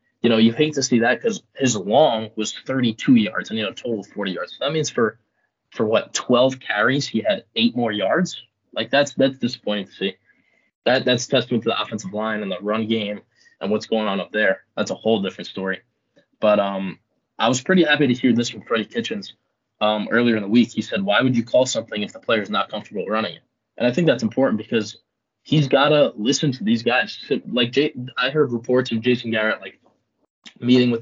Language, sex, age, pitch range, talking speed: English, male, 20-39, 110-130 Hz, 225 wpm